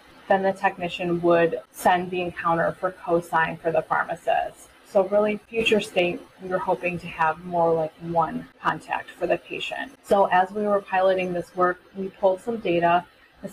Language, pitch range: English, 165-195 Hz